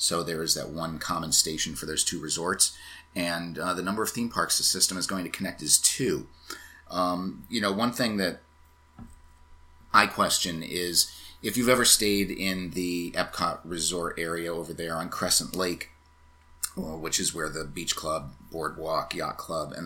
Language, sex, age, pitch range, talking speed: English, male, 30-49, 80-95 Hz, 180 wpm